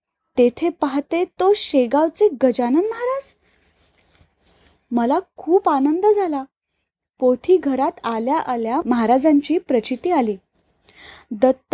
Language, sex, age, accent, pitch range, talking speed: Marathi, female, 20-39, native, 240-310 Hz, 90 wpm